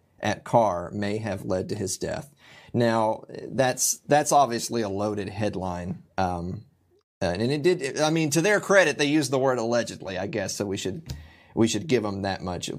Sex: male